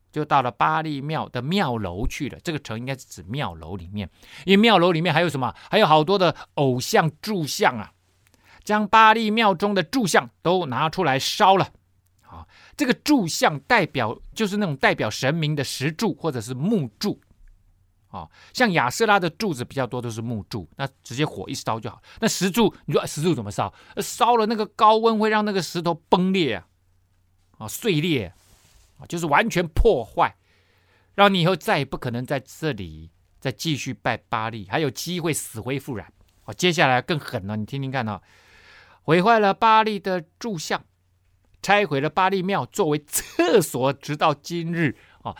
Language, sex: Chinese, male